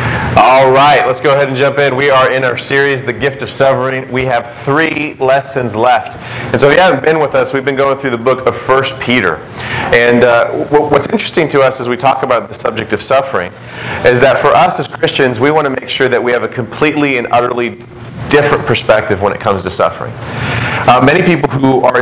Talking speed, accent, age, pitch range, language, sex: 225 wpm, American, 30-49, 120-140 Hz, English, male